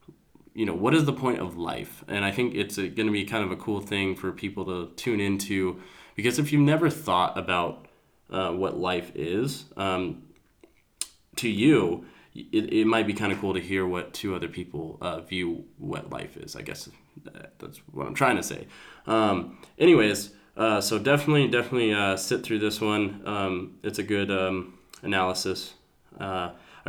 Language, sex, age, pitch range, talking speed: English, male, 20-39, 90-105 Hz, 185 wpm